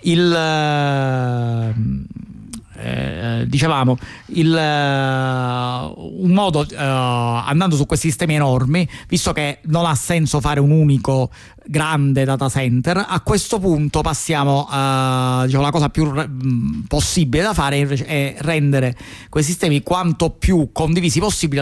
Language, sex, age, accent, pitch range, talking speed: Italian, male, 40-59, native, 130-165 Hz, 130 wpm